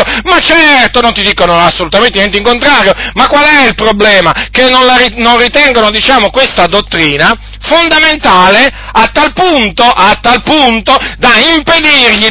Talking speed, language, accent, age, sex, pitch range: 150 wpm, Italian, native, 40-59, male, 240-285 Hz